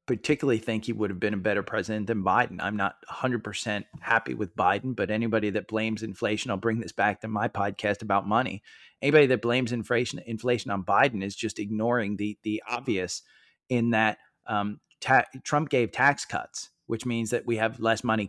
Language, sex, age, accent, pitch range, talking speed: English, male, 30-49, American, 110-130 Hz, 195 wpm